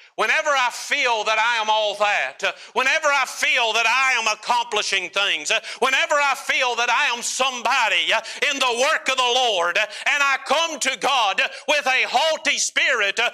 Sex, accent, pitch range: male, American, 185-285 Hz